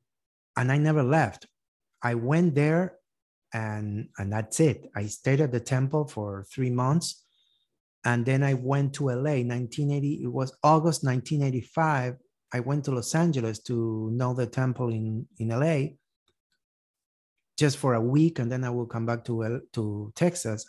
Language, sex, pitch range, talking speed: English, male, 115-145 Hz, 160 wpm